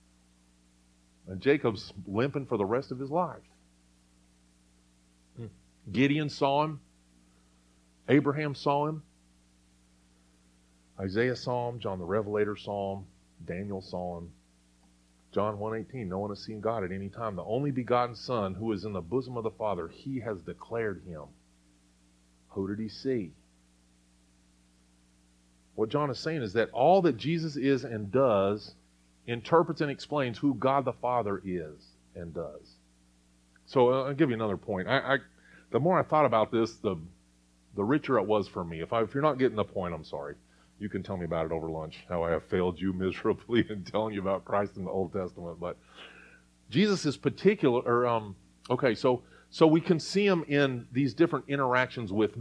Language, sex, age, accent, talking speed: English, male, 40-59, American, 170 wpm